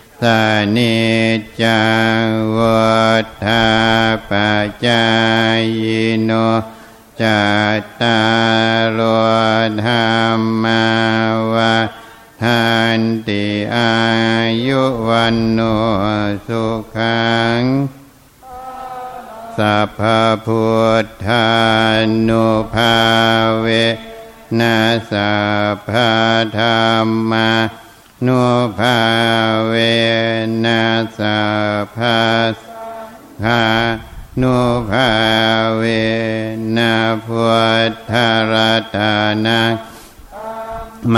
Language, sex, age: Thai, male, 60-79